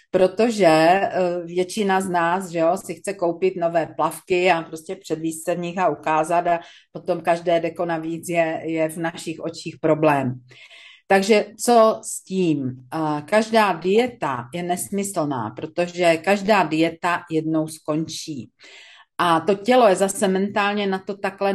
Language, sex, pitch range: Czech, female, 165-195 Hz